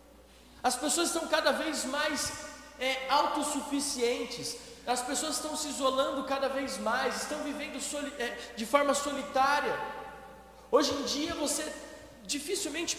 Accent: Brazilian